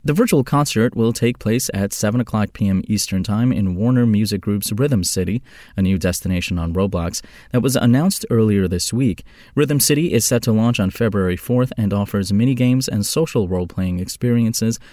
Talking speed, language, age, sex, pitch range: 180 wpm, English, 20-39, male, 100-130 Hz